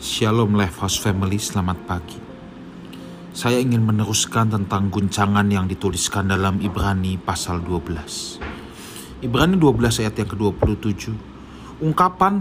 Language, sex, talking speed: Indonesian, male, 105 wpm